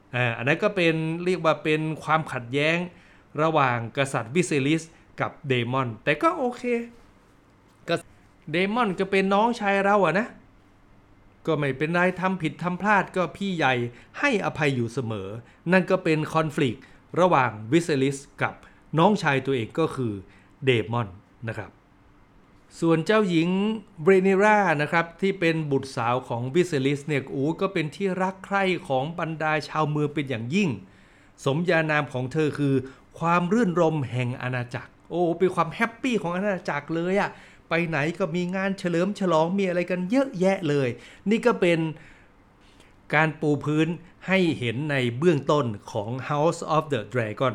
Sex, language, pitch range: male, Thai, 130-180 Hz